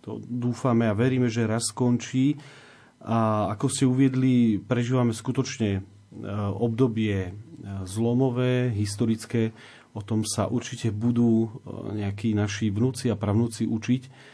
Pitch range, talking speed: 105-130 Hz, 115 wpm